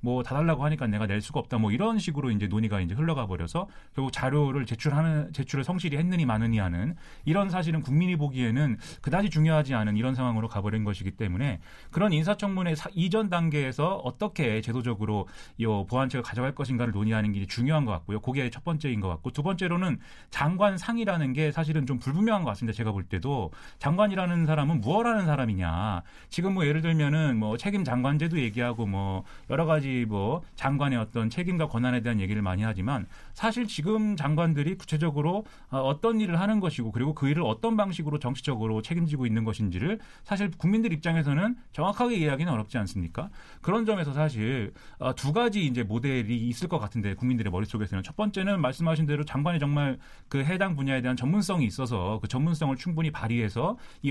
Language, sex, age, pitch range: Korean, male, 30-49, 115-165 Hz